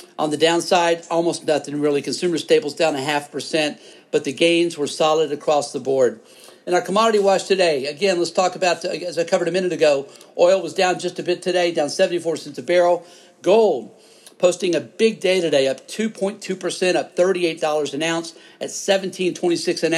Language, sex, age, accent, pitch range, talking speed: English, male, 50-69, American, 155-180 Hz, 190 wpm